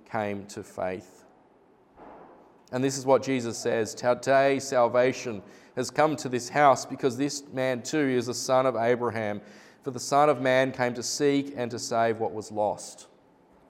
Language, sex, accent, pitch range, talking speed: English, male, Australian, 115-140 Hz, 170 wpm